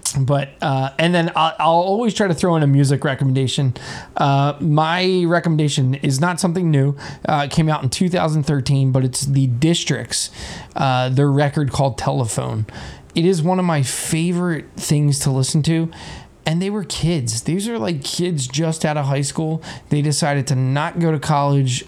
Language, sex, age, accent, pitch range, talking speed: English, male, 20-39, American, 130-160 Hz, 180 wpm